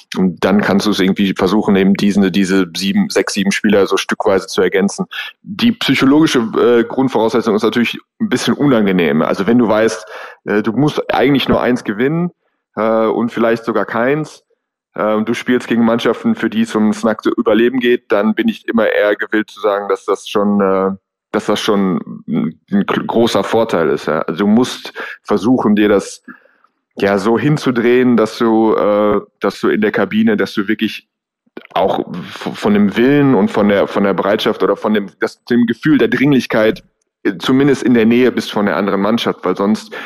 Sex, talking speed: male, 190 wpm